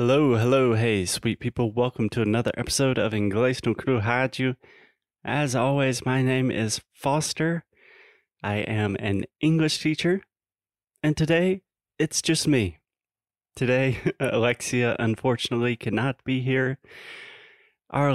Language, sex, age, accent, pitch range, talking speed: Portuguese, male, 20-39, American, 105-130 Hz, 120 wpm